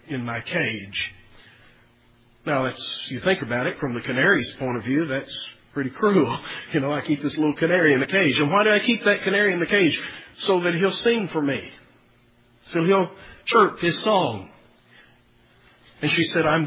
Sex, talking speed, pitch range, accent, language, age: male, 190 wpm, 125-180 Hz, American, English, 50-69